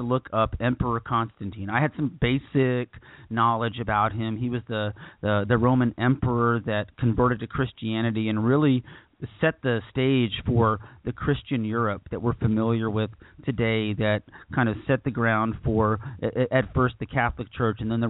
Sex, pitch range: male, 110-130 Hz